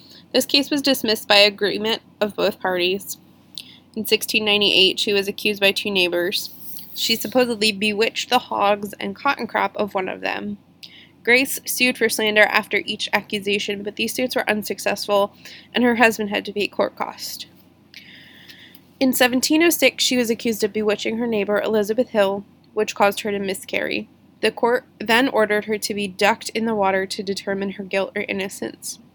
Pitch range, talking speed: 200-240 Hz, 170 wpm